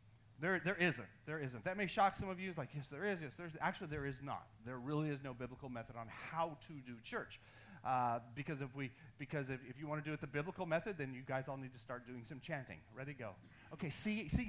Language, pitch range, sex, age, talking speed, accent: English, 130-195 Hz, male, 40-59, 265 wpm, American